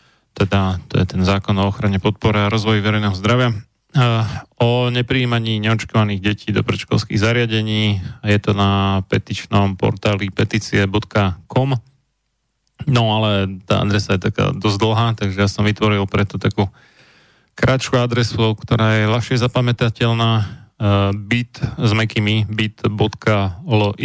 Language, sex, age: Slovak, male, 30-49